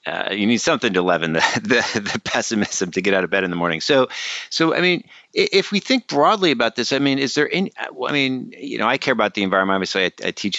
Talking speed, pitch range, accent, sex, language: 270 wpm, 85-105 Hz, American, male, English